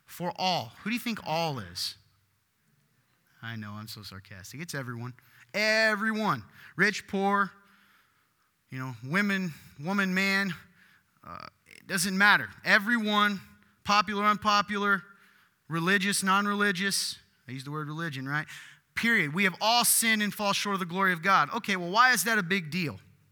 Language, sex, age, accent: English, male, 20-39, American